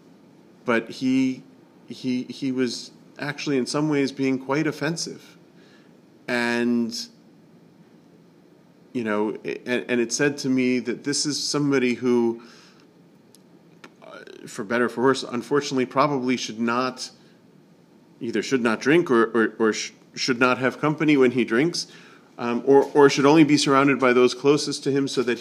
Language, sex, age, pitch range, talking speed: English, male, 40-59, 115-135 Hz, 155 wpm